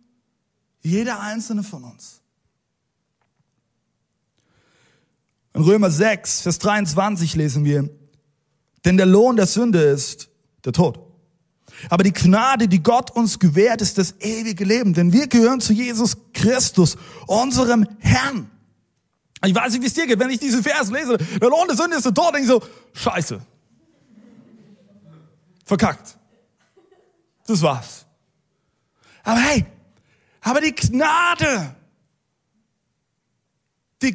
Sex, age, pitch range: male, 30-49, 150-225 Hz